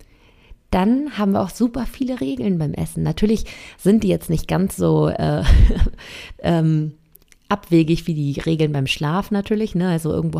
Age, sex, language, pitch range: 30-49, female, German, 160-205 Hz